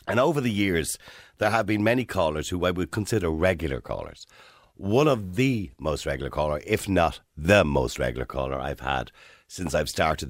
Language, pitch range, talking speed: English, 75-110 Hz, 185 wpm